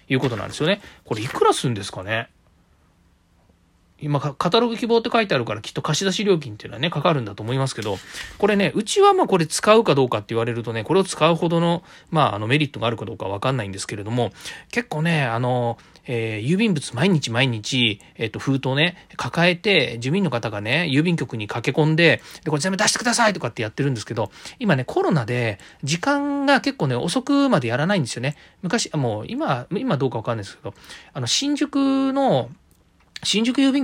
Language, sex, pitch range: Japanese, male, 115-180 Hz